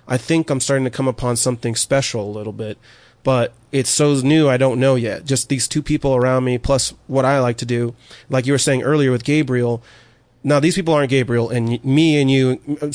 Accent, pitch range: American, 120-140 Hz